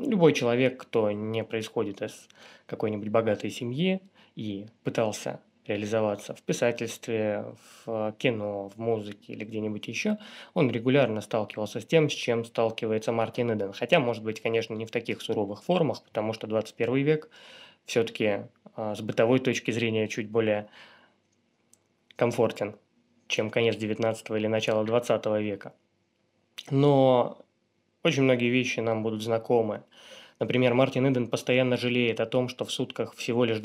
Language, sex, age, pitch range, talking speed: Russian, male, 20-39, 110-125 Hz, 140 wpm